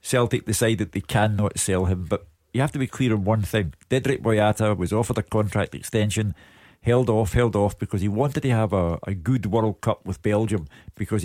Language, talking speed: English, 210 wpm